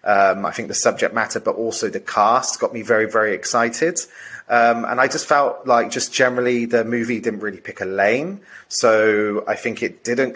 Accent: British